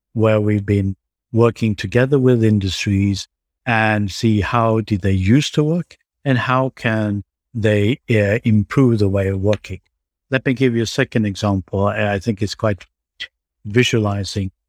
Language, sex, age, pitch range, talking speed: English, male, 50-69, 100-120 Hz, 150 wpm